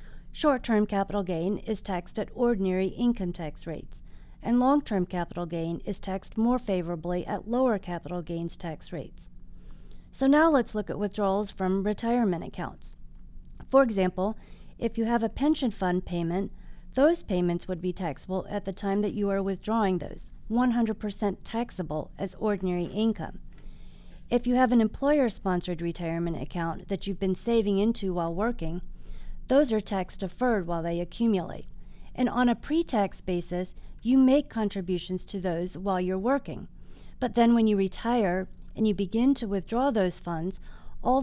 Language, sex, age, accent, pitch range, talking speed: English, female, 40-59, American, 180-230 Hz, 155 wpm